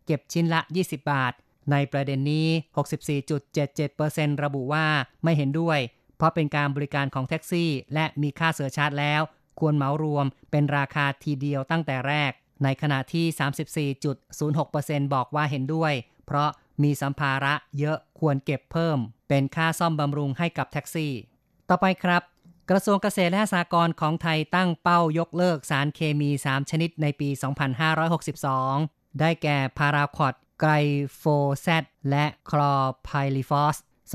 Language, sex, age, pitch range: Thai, female, 30-49, 140-160 Hz